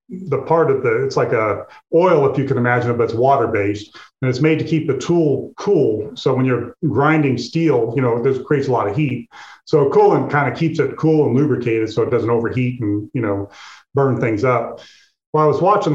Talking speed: 230 wpm